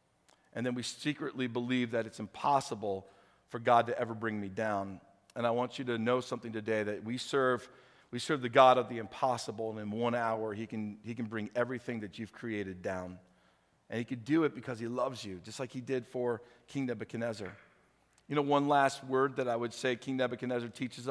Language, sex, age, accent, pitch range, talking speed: English, male, 40-59, American, 110-130 Hz, 215 wpm